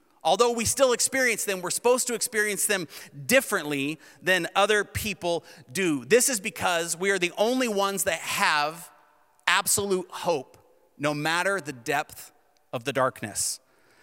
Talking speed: 145 wpm